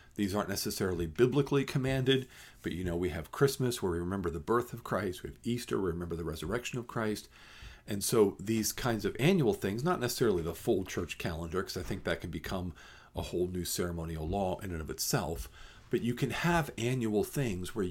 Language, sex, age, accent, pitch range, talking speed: English, male, 40-59, American, 85-115 Hz, 210 wpm